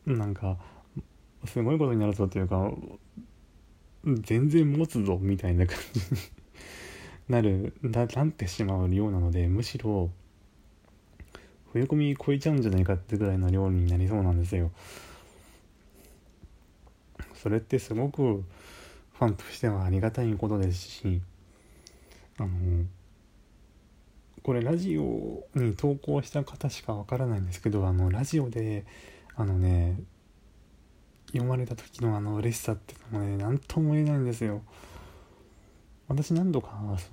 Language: Japanese